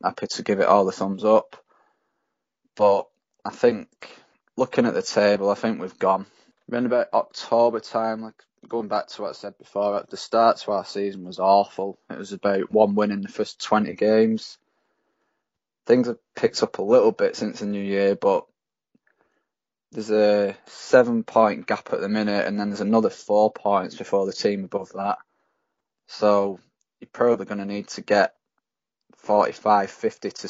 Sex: male